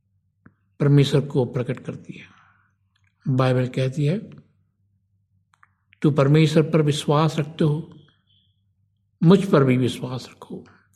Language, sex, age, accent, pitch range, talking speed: Hindi, male, 60-79, native, 100-145 Hz, 105 wpm